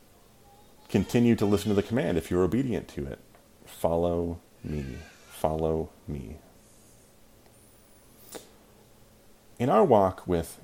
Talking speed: 105 wpm